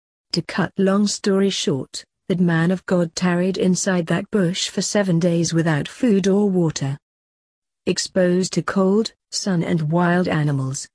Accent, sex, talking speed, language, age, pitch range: British, female, 150 wpm, English, 40-59, 150-190 Hz